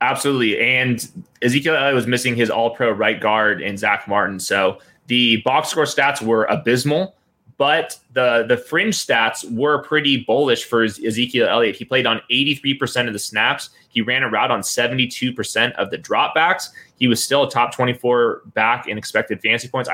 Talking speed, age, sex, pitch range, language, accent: 175 wpm, 20-39, male, 115-140 Hz, English, American